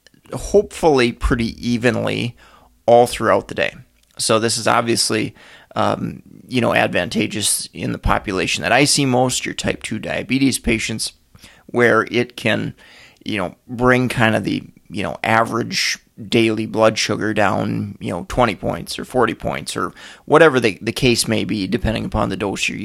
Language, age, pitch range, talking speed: English, 30-49, 110-125 Hz, 165 wpm